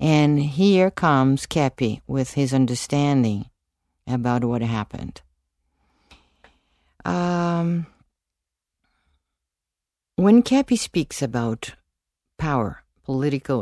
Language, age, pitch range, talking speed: English, 50-69, 115-170 Hz, 75 wpm